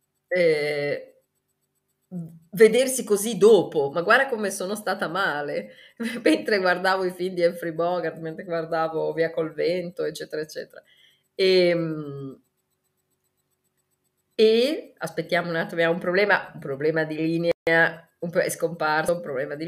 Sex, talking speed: female, 130 wpm